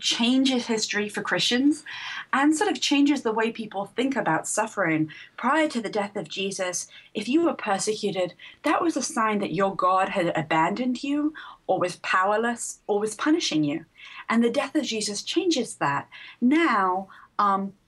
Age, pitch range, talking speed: 30-49, 180-265 Hz, 170 wpm